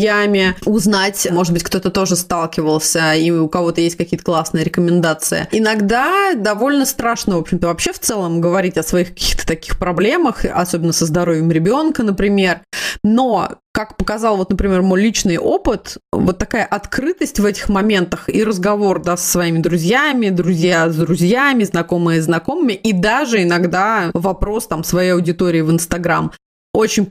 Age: 20-39